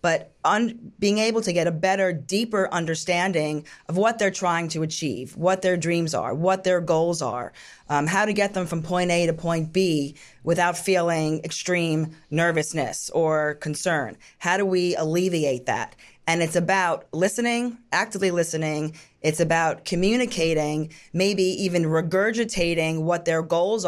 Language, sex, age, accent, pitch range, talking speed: English, female, 30-49, American, 160-185 Hz, 150 wpm